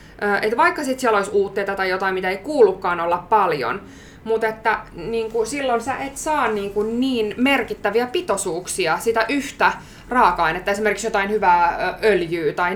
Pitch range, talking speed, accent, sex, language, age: 190-245 Hz, 160 wpm, native, female, Finnish, 20-39